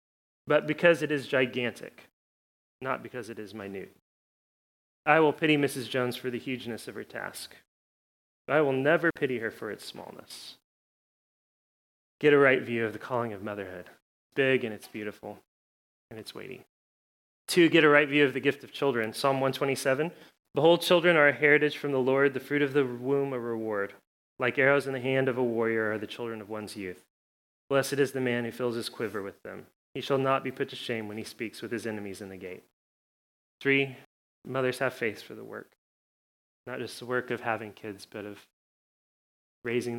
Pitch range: 105-135 Hz